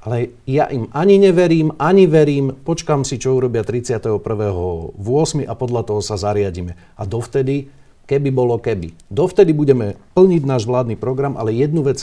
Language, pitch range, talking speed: Slovak, 115-150 Hz, 155 wpm